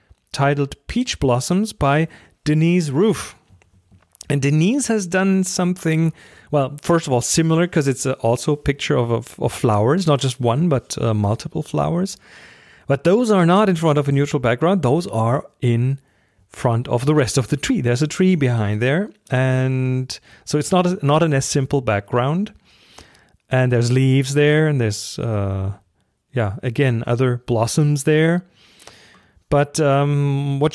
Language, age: English, 40-59